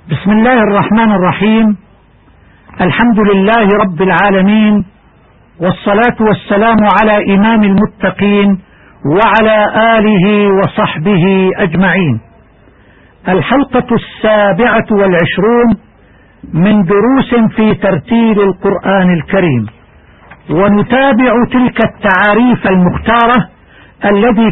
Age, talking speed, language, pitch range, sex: 50-69, 75 wpm, Arabic, 185-230 Hz, male